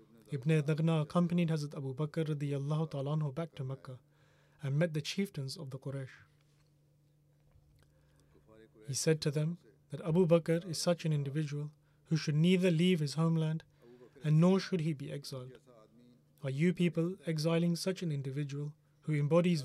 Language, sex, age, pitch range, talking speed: English, male, 30-49, 140-165 Hz, 145 wpm